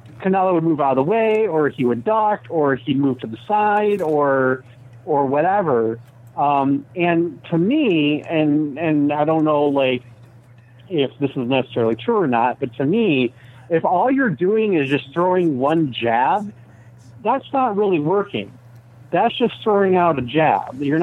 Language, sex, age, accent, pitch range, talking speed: English, male, 50-69, American, 125-175 Hz, 170 wpm